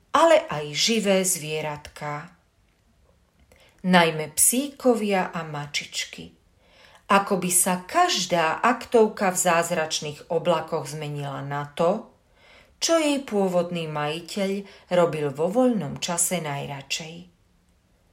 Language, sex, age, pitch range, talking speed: Slovak, female, 40-59, 145-215 Hz, 95 wpm